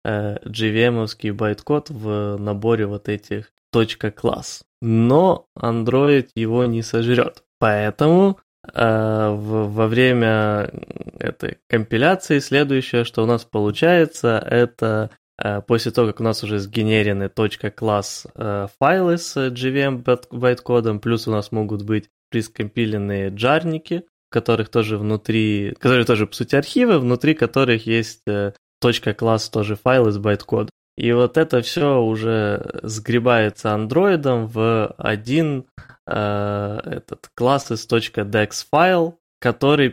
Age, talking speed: 20-39, 120 wpm